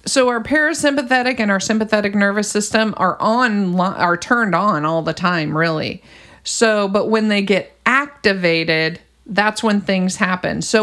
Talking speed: 155 wpm